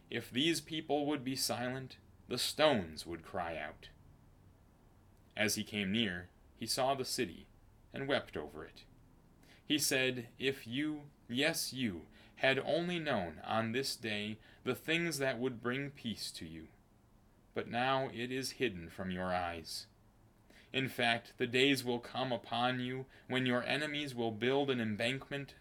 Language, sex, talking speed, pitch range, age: English, male, 155 wpm, 100-130 Hz, 30-49